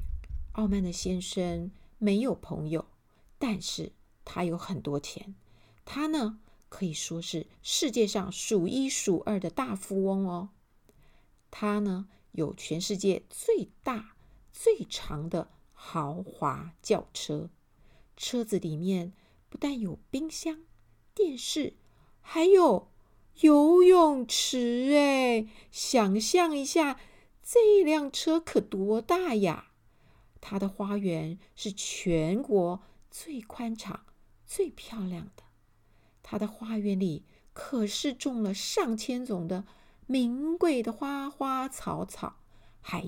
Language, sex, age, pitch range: Chinese, female, 50-69, 185-280 Hz